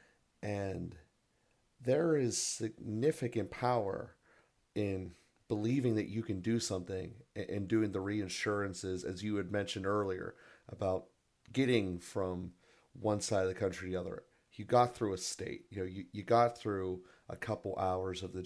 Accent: American